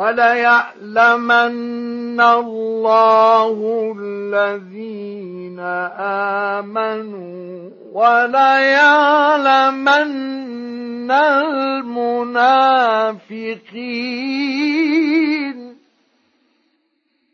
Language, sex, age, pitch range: Arabic, male, 50-69, 240-325 Hz